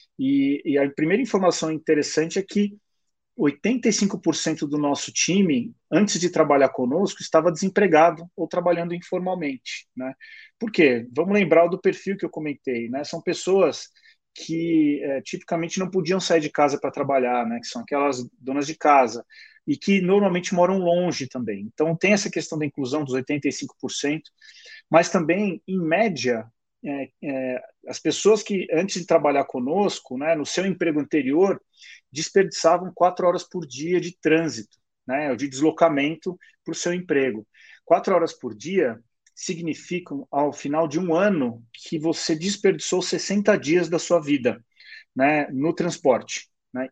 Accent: Brazilian